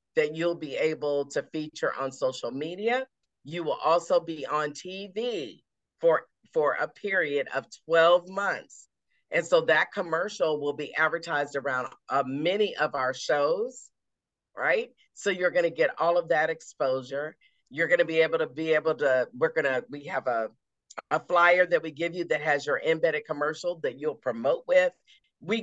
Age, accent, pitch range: 50-69, American, 140-180 Hz